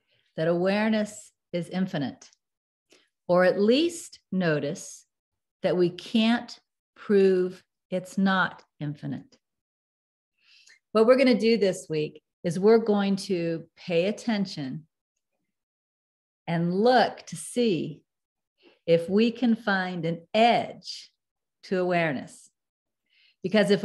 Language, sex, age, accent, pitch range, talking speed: English, female, 50-69, American, 175-225 Hz, 105 wpm